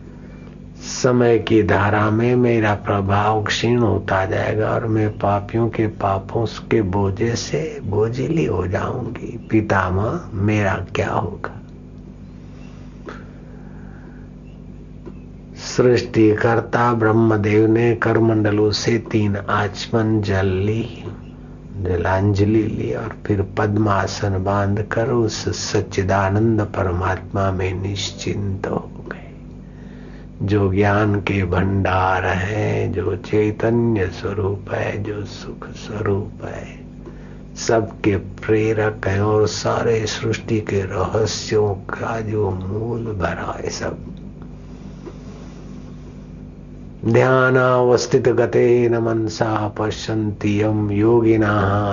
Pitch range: 95-110 Hz